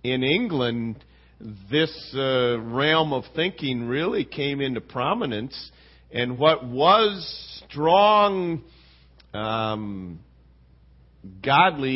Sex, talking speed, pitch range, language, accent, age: male, 85 wpm, 105-155 Hz, English, American, 50-69